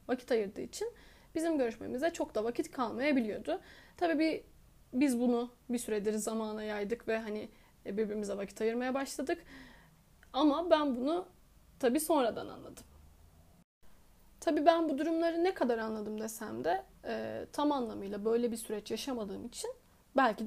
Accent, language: native, Turkish